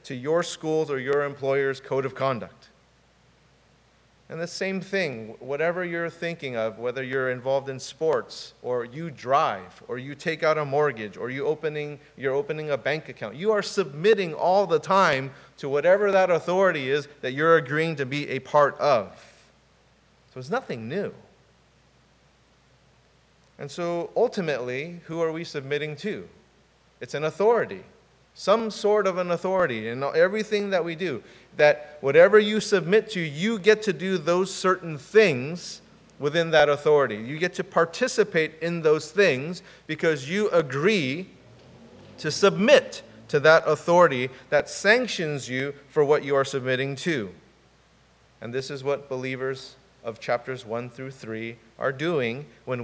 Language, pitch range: English, 135-175 Hz